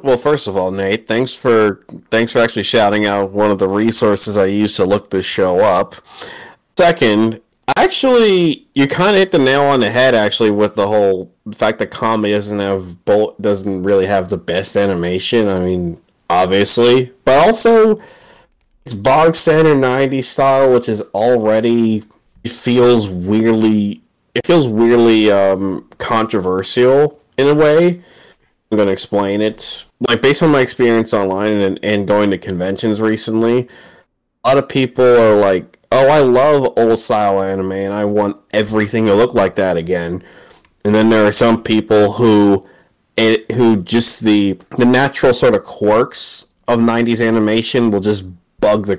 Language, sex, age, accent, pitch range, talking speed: English, male, 30-49, American, 100-125 Hz, 165 wpm